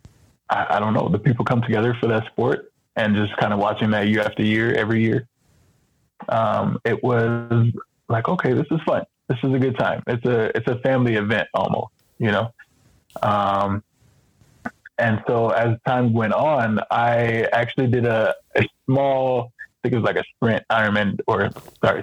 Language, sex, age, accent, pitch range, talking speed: English, male, 20-39, American, 105-120 Hz, 180 wpm